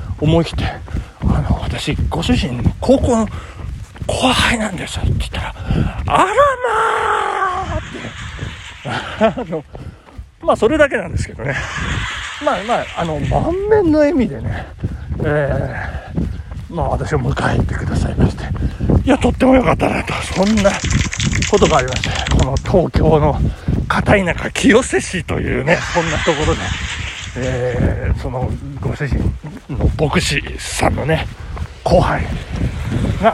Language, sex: Japanese, male